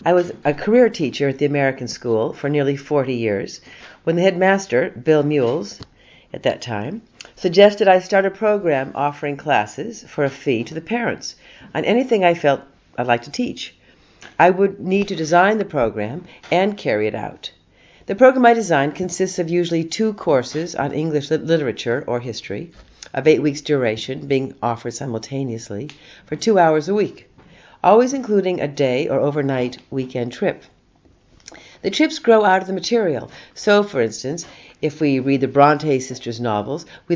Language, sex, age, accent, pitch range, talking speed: English, female, 60-79, American, 135-185 Hz, 170 wpm